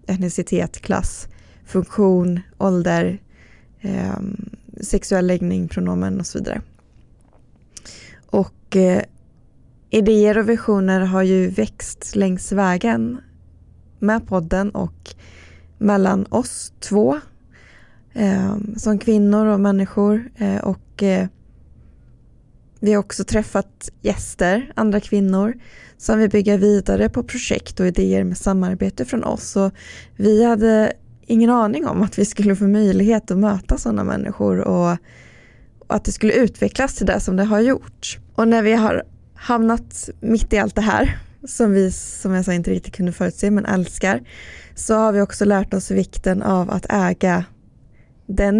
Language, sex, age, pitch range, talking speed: Swedish, female, 20-39, 180-215 Hz, 130 wpm